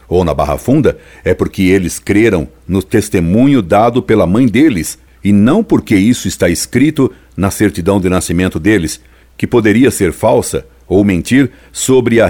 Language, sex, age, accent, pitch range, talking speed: Portuguese, male, 60-79, Brazilian, 85-110 Hz, 160 wpm